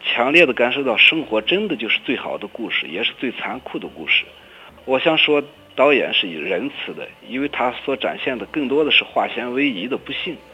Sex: male